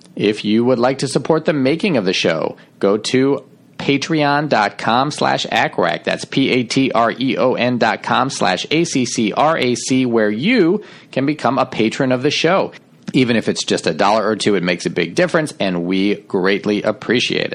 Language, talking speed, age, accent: English, 160 wpm, 40-59, American